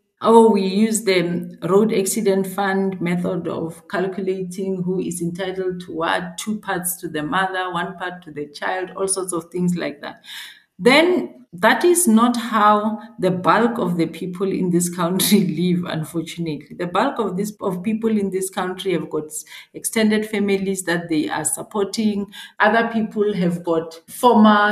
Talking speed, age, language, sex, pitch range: 165 wpm, 40-59, English, female, 175-220 Hz